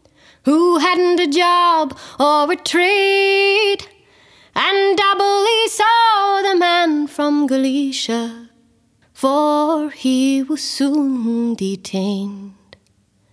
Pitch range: 255-345 Hz